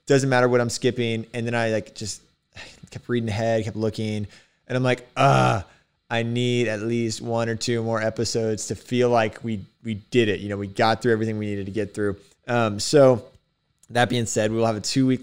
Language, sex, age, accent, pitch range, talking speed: English, male, 20-39, American, 105-125 Hz, 215 wpm